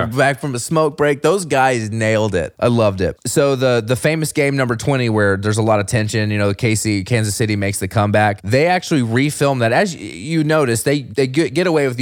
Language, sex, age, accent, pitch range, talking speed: English, male, 20-39, American, 100-120 Hz, 230 wpm